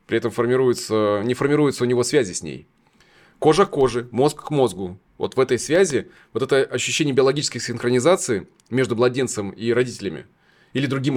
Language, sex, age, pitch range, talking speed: Russian, male, 20-39, 110-135 Hz, 165 wpm